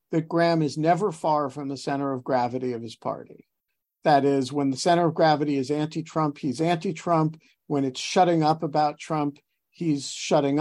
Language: English